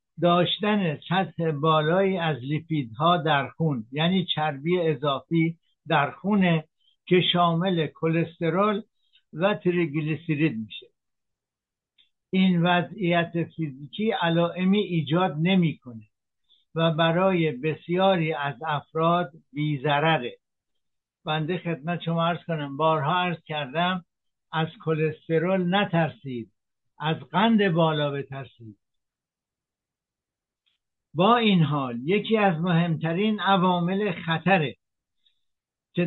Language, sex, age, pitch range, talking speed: Persian, male, 60-79, 155-185 Hz, 90 wpm